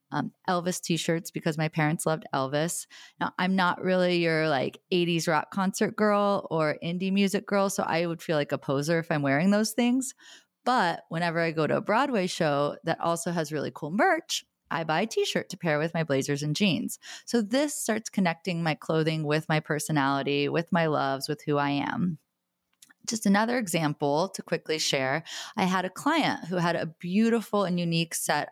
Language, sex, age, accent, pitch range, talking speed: English, female, 20-39, American, 155-205 Hz, 200 wpm